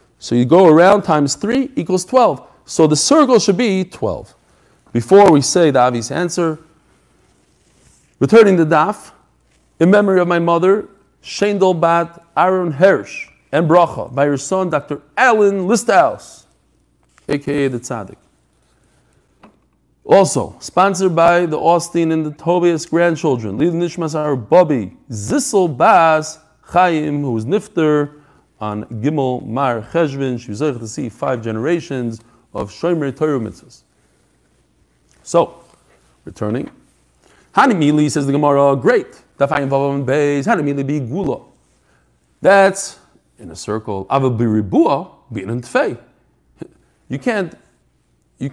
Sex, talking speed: male, 115 wpm